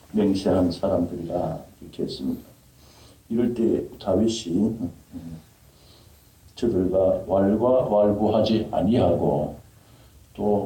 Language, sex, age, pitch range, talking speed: English, male, 60-79, 85-115 Hz, 70 wpm